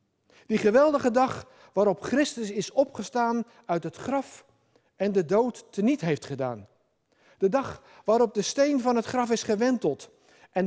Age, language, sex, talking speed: 60-79, Dutch, male, 150 wpm